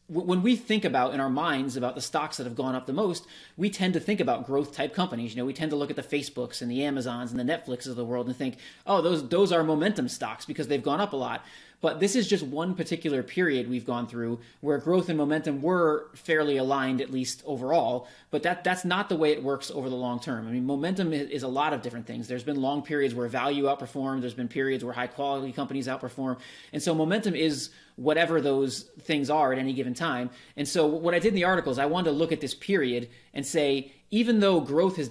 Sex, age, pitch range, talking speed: male, 30-49, 130-160 Hz, 250 wpm